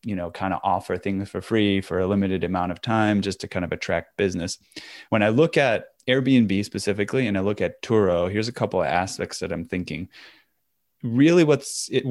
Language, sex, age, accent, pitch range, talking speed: English, male, 20-39, American, 95-115 Hz, 205 wpm